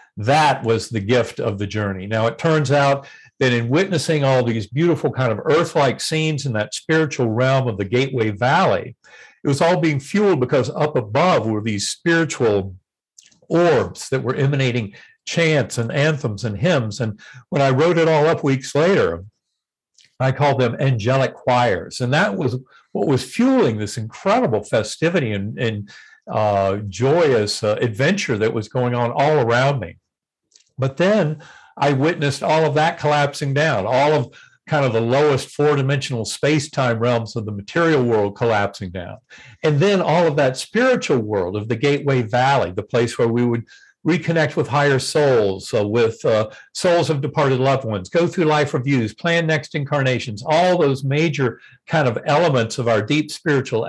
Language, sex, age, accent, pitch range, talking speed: English, male, 50-69, American, 115-155 Hz, 170 wpm